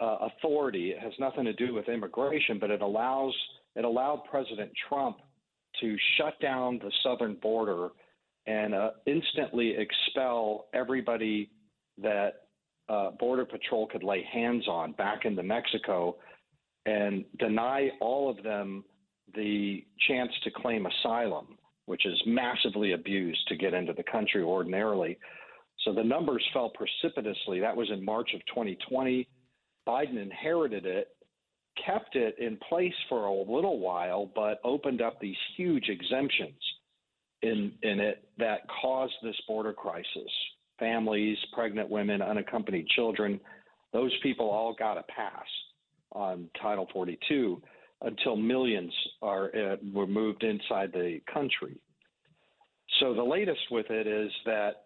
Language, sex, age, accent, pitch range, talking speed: English, male, 50-69, American, 105-125 Hz, 135 wpm